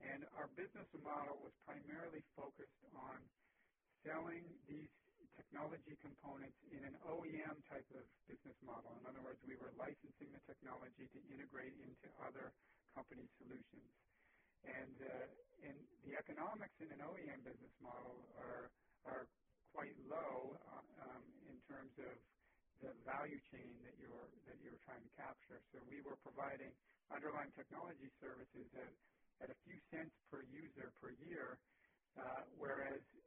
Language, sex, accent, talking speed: English, male, American, 145 wpm